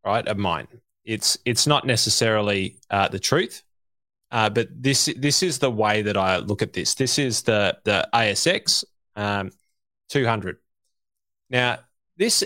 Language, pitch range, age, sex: English, 105-130 Hz, 20-39, male